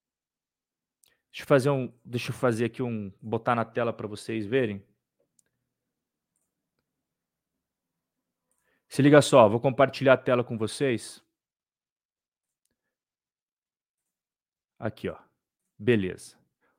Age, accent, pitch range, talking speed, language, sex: 40-59, Brazilian, 140-190 Hz, 95 wpm, Portuguese, male